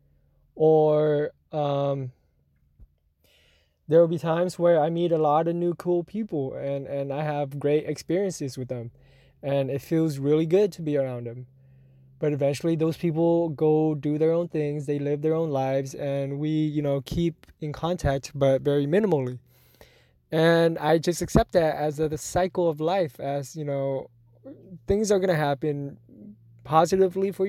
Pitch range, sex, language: 135-170 Hz, male, English